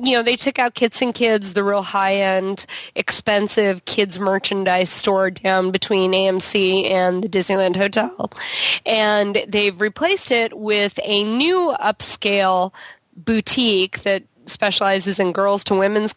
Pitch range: 185-215 Hz